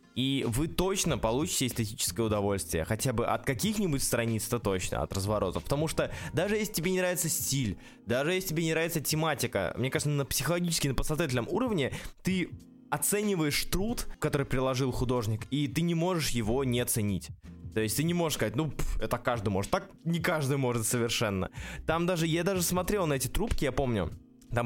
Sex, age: male, 20-39